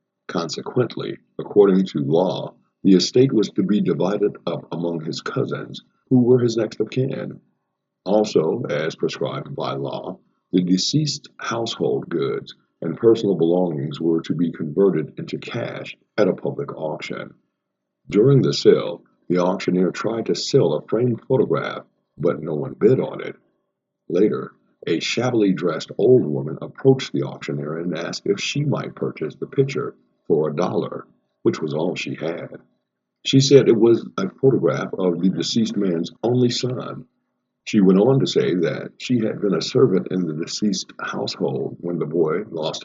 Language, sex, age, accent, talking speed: English, male, 50-69, American, 160 wpm